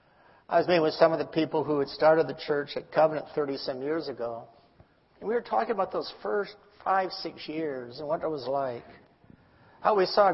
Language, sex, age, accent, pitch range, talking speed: English, male, 60-79, American, 145-180 Hz, 210 wpm